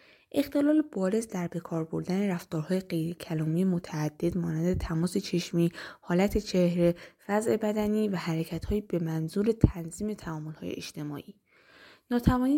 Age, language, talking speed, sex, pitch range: 10-29, Persian, 110 wpm, female, 170-220 Hz